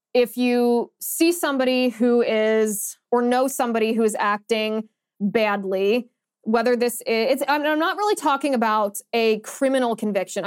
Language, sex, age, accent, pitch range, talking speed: English, female, 20-39, American, 215-260 Hz, 145 wpm